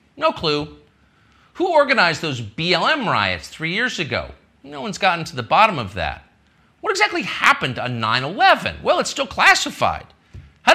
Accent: American